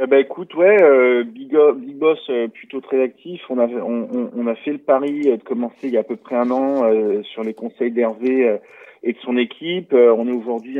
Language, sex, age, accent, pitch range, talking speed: French, male, 30-49, French, 115-155 Hz, 205 wpm